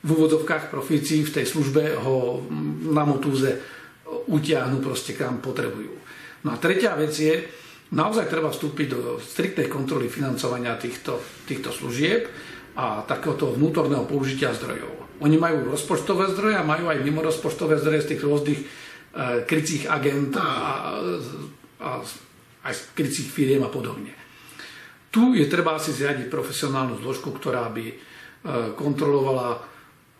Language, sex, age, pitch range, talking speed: Slovak, male, 50-69, 135-155 Hz, 125 wpm